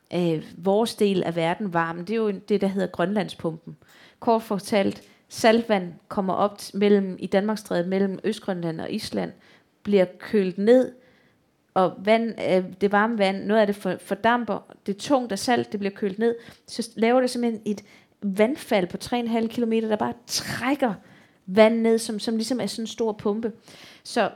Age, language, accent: 30-49, Danish, native